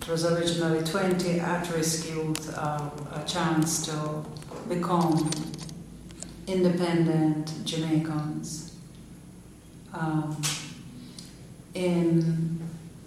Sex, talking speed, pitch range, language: female, 70 wpm, 155-175 Hz, English